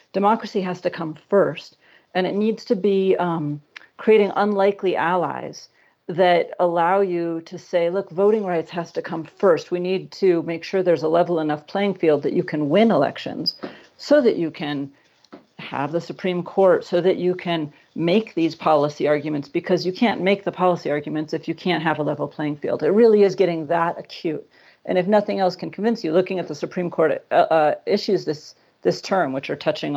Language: English